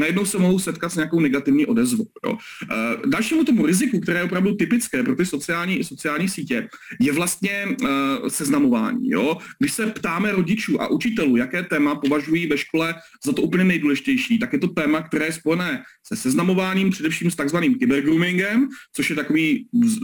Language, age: Czech, 40-59